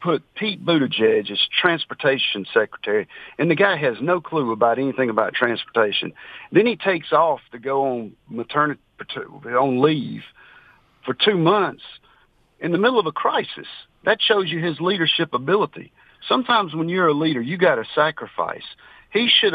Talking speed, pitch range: 160 wpm, 145-195 Hz